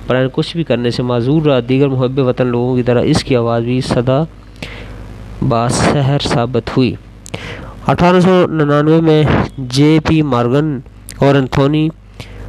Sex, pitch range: male, 120-140 Hz